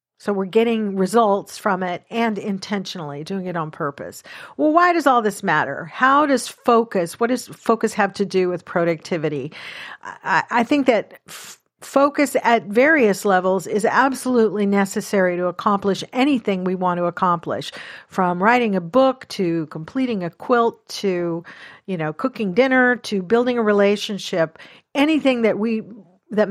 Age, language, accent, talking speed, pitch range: 50-69, English, American, 155 wpm, 185-230 Hz